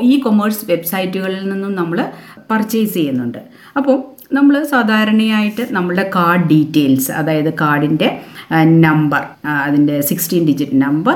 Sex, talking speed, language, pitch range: female, 100 wpm, Malayalam, 160-230 Hz